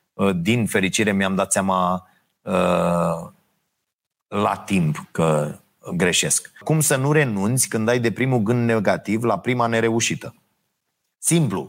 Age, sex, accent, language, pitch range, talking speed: 30-49, male, native, Romanian, 110-135 Hz, 120 wpm